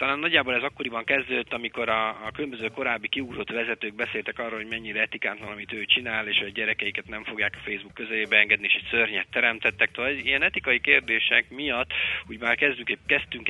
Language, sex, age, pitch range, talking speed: Hungarian, male, 30-49, 105-125 Hz, 190 wpm